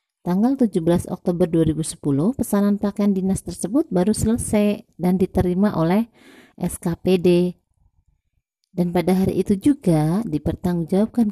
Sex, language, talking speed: female, Indonesian, 105 wpm